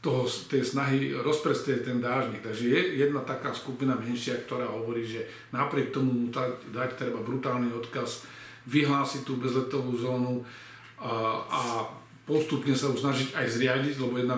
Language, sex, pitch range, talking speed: Slovak, male, 120-130 Hz, 150 wpm